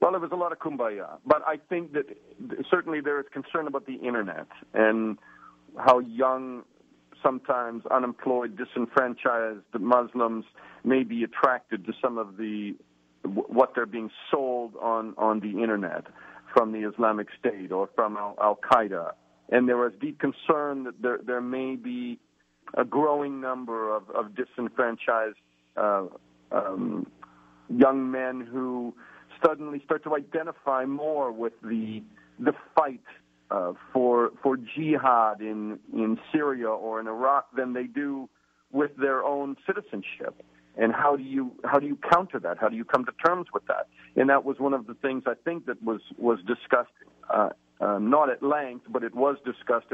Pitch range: 110-140 Hz